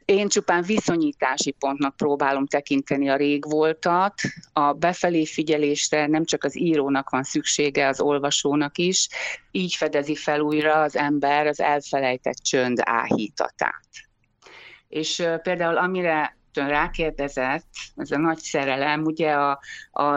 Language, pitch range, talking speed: Hungarian, 140-165 Hz, 125 wpm